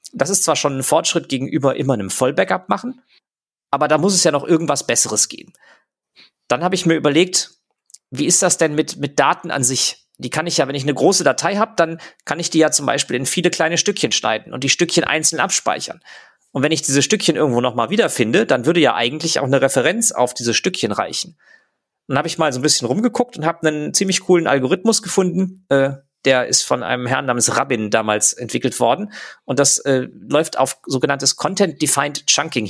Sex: male